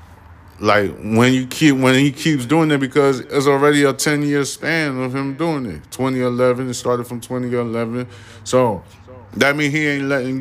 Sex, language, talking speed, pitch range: male, English, 180 wpm, 95-125 Hz